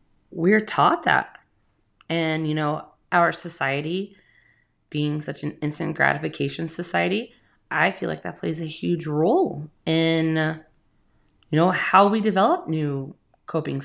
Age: 20-39